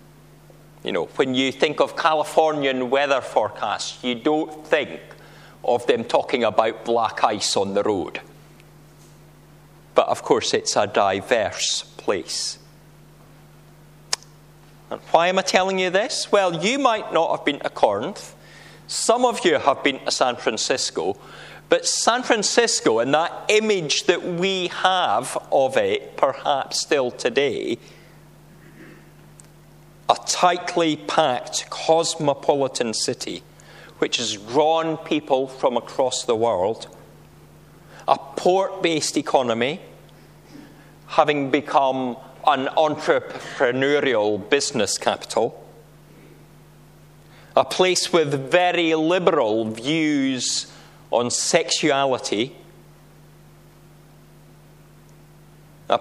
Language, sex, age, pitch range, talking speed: English, male, 40-59, 140-180 Hz, 105 wpm